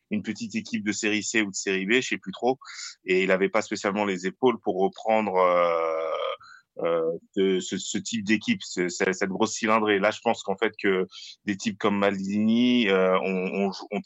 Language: French